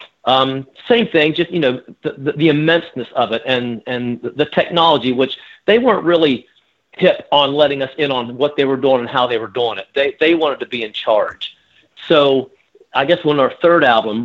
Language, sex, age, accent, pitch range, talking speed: English, male, 40-59, American, 120-150 Hz, 210 wpm